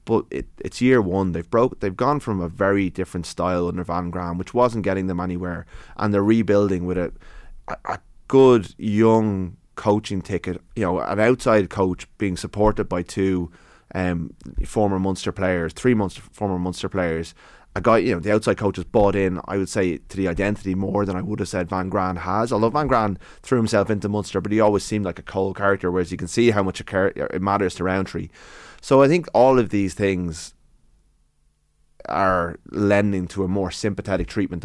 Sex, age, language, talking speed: male, 30-49, English, 200 wpm